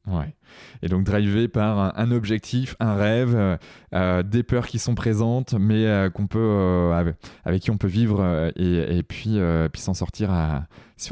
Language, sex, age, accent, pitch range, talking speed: French, male, 20-39, French, 90-115 Hz, 195 wpm